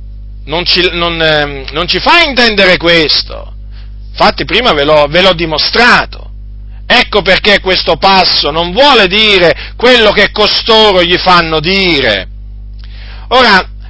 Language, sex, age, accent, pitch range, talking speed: Italian, male, 40-59, native, 155-255 Hz, 110 wpm